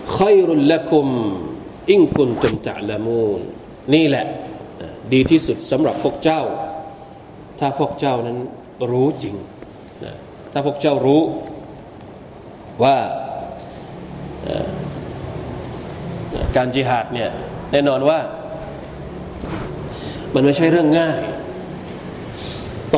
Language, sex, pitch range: Thai, male, 130-160 Hz